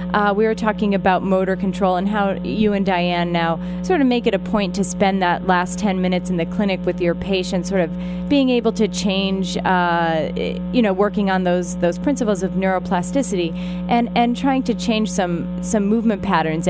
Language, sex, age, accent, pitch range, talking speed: English, female, 30-49, American, 180-210 Hz, 200 wpm